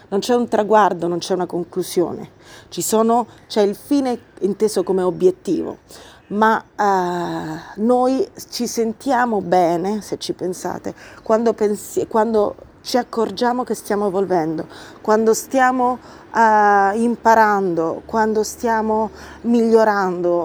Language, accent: Italian, native